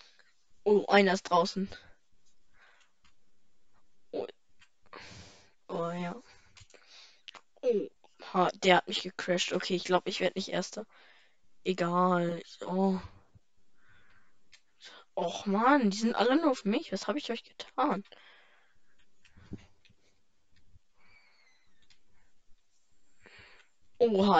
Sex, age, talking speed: female, 20-39, 90 wpm